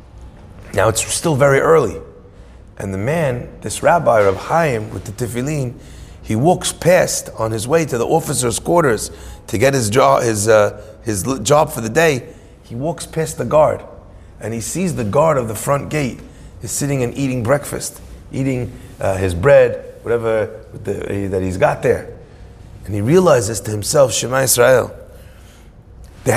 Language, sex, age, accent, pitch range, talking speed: English, male, 30-49, American, 105-155 Hz, 170 wpm